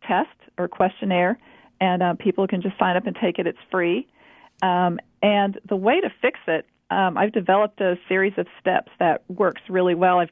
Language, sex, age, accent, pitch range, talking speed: English, female, 40-59, American, 180-205 Hz, 200 wpm